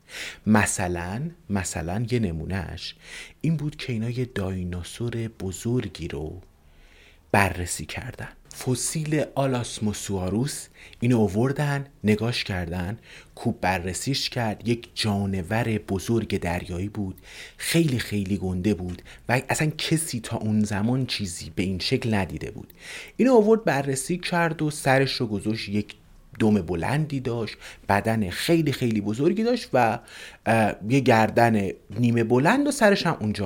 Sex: male